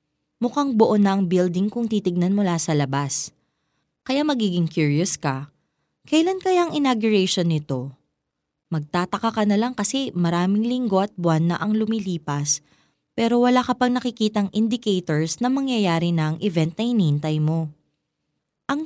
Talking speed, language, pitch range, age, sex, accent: 145 wpm, Filipino, 160-230 Hz, 20-39, female, native